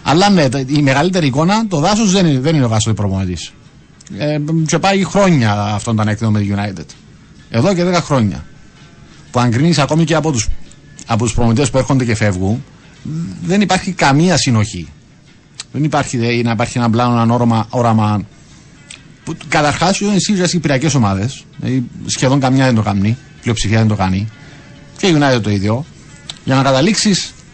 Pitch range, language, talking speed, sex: 120-165 Hz, Greek, 165 wpm, male